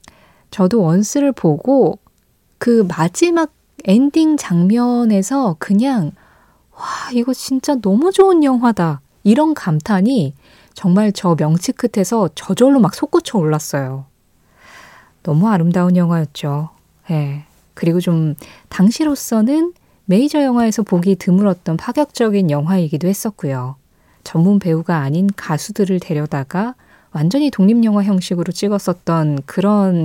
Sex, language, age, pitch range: female, Korean, 20-39, 160-225 Hz